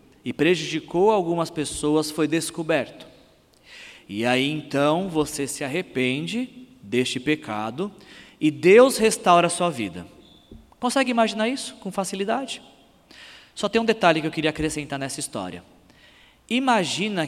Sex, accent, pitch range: male, Brazilian, 130-175 Hz